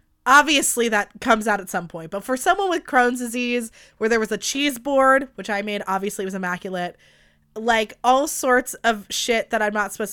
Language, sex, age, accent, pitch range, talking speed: English, female, 20-39, American, 190-245 Hz, 200 wpm